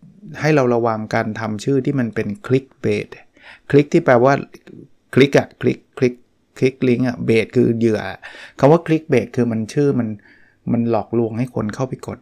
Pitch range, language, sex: 110-130 Hz, Thai, male